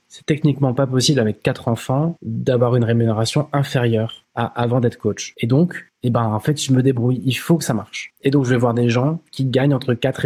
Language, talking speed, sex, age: French, 235 wpm, male, 20-39